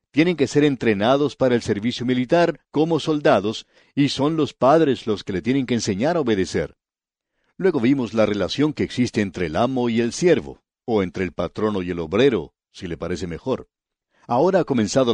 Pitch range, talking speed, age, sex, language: 110-140 Hz, 190 wpm, 60-79, male, English